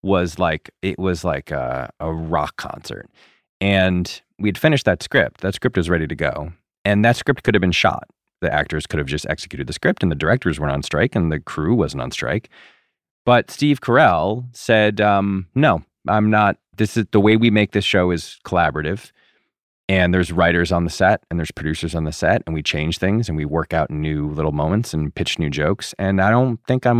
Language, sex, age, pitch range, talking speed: English, male, 30-49, 85-105 Hz, 220 wpm